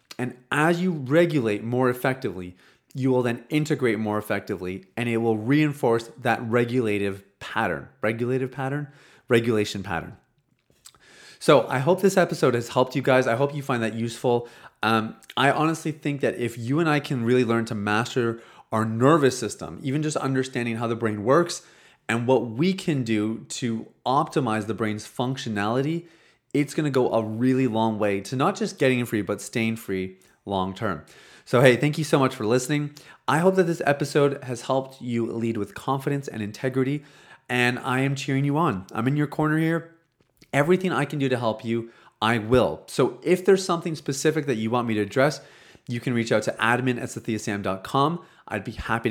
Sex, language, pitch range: male, English, 115-145 Hz